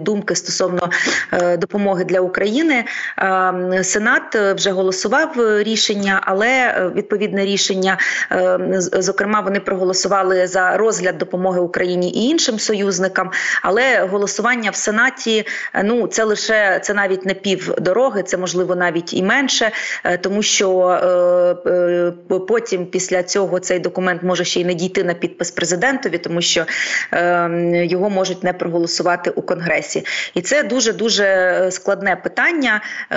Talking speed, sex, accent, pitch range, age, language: 120 wpm, female, native, 180-215 Hz, 30-49, Ukrainian